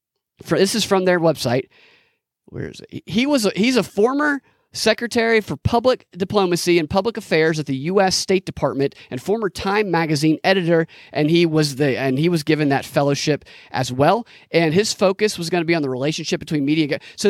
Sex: male